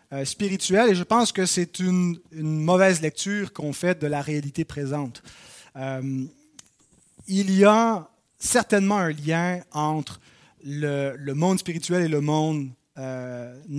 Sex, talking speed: male, 140 wpm